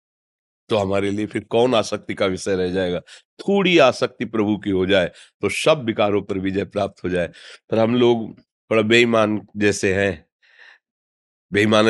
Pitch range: 95-130 Hz